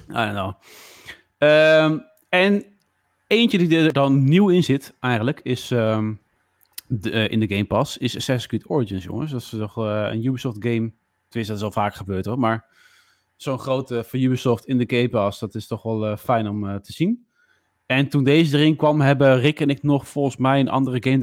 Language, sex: Dutch, male